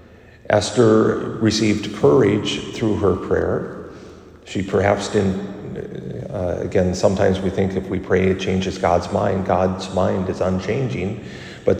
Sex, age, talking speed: male, 50-69, 130 wpm